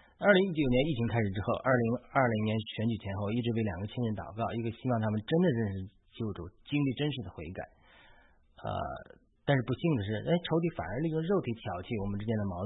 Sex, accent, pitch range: male, native, 100-135 Hz